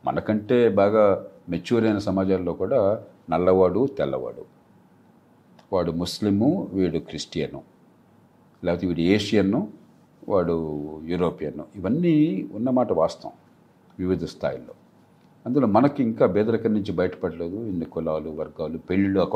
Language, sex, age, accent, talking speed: Telugu, male, 40-59, native, 100 wpm